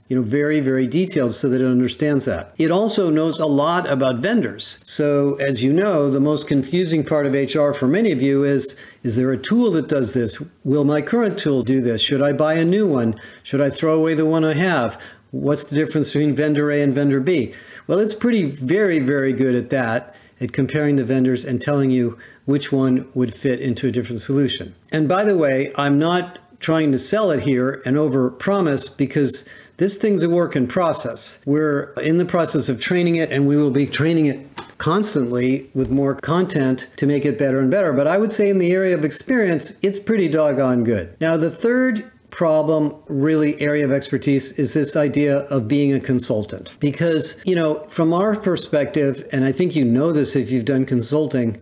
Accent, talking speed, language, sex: American, 205 wpm, English, male